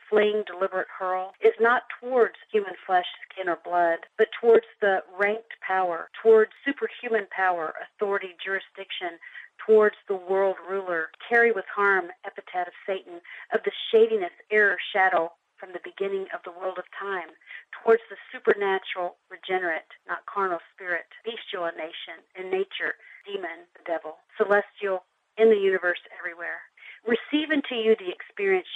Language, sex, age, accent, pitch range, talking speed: English, female, 50-69, American, 180-280 Hz, 140 wpm